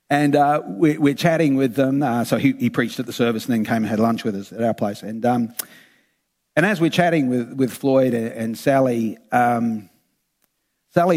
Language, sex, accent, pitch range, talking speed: English, male, Australian, 115-140 Hz, 205 wpm